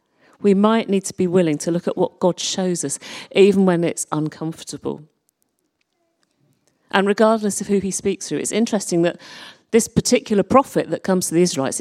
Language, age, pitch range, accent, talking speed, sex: English, 40-59, 165-225 Hz, British, 180 wpm, female